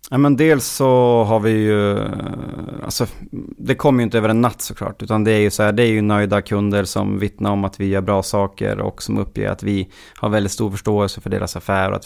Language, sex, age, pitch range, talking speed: Swedish, male, 30-49, 100-120 Hz, 245 wpm